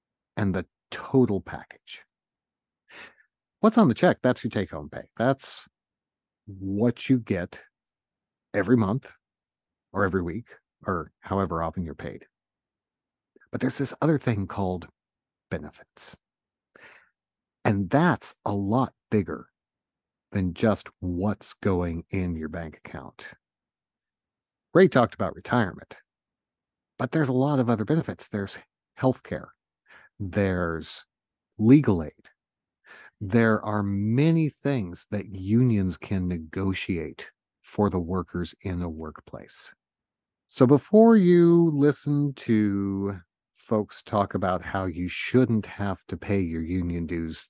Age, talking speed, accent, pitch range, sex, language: 50-69, 115 wpm, American, 90-120 Hz, male, English